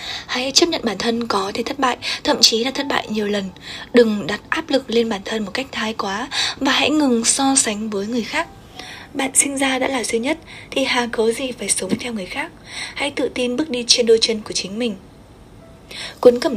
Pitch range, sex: 220-270 Hz, female